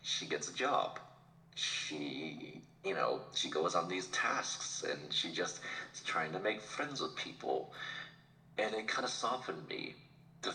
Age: 30-49